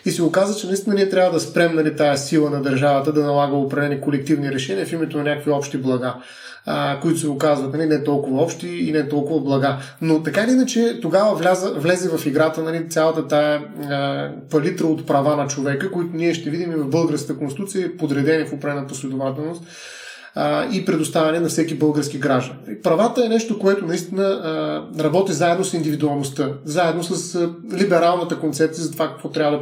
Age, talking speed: 30-49, 185 wpm